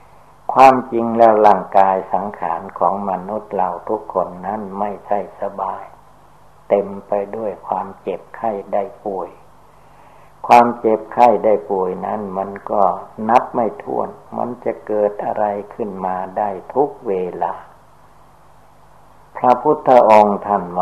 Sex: male